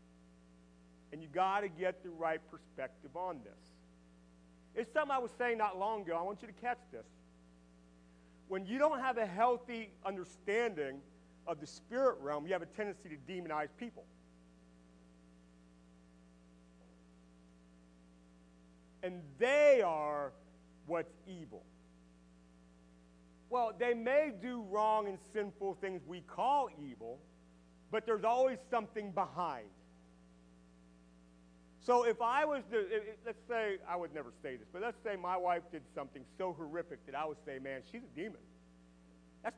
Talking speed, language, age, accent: 140 wpm, English, 40-59, American